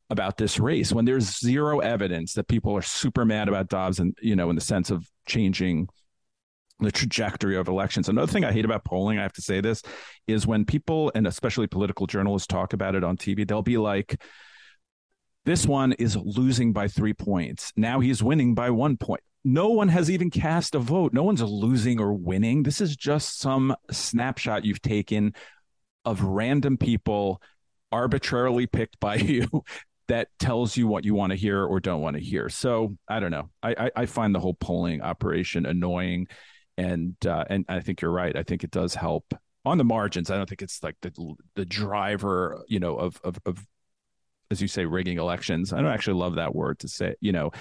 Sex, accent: male, American